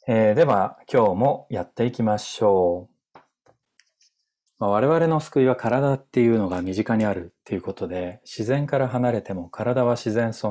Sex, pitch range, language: male, 105-135 Hz, Japanese